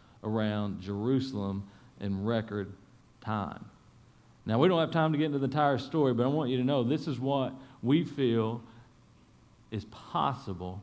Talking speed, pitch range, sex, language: 160 wpm, 115-145 Hz, male, English